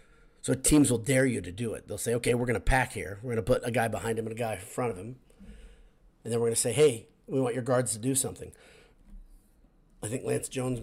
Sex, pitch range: male, 115-135 Hz